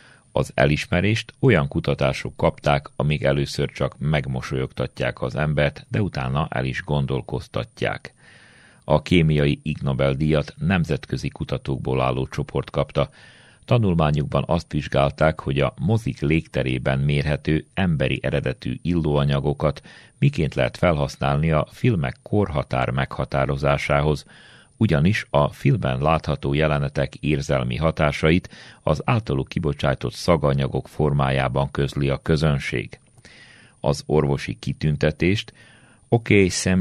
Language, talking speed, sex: Hungarian, 100 wpm, male